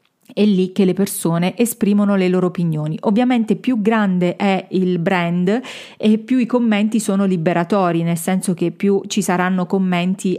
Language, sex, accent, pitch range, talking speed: Italian, female, native, 180-225 Hz, 160 wpm